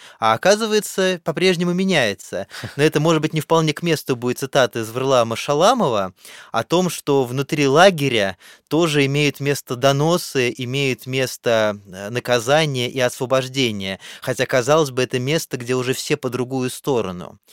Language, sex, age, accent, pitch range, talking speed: Russian, male, 20-39, native, 125-160 Hz, 145 wpm